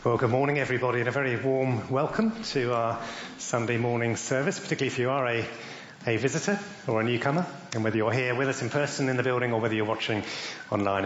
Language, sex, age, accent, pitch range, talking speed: English, male, 30-49, British, 115-145 Hz, 215 wpm